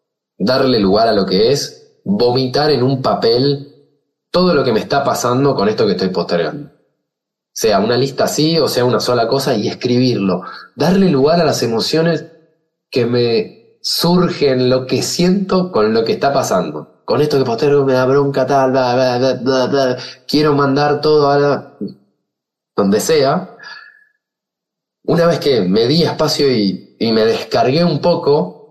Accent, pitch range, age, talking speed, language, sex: Argentinian, 130-170 Hz, 20-39, 165 wpm, Spanish, male